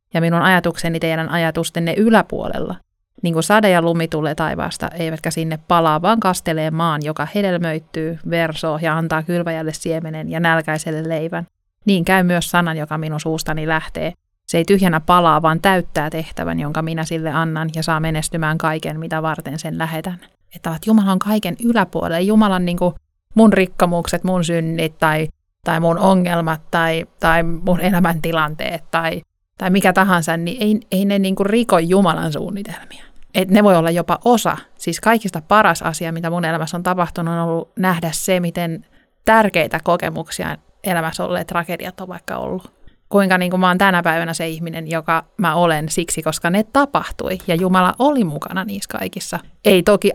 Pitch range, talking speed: 160-185 Hz, 170 wpm